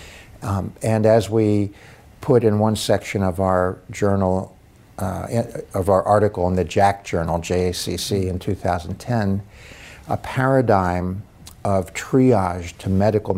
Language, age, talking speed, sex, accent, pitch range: English, 60-79, 125 wpm, male, American, 90-110 Hz